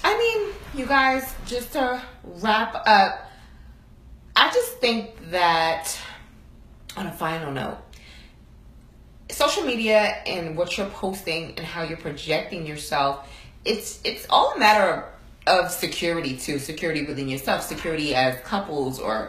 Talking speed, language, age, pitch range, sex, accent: 135 wpm, English, 20-39, 150-210 Hz, female, American